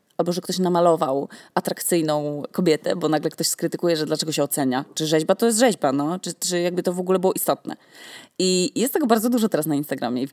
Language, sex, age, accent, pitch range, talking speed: Polish, female, 20-39, native, 160-225 Hz, 215 wpm